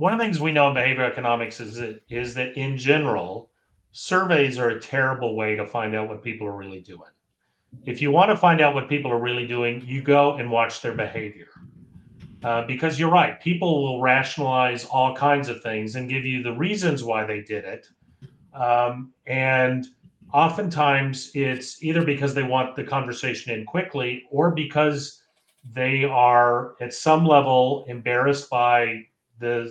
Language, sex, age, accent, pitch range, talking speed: English, male, 40-59, American, 120-145 Hz, 175 wpm